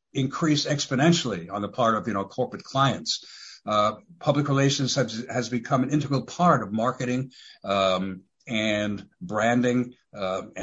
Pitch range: 115-145 Hz